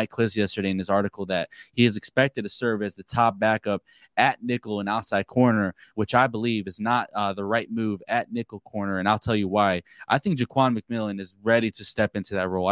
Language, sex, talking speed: English, male, 225 wpm